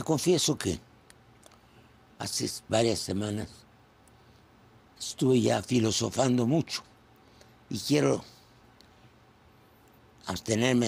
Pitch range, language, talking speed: 110-125 Hz, Spanish, 65 wpm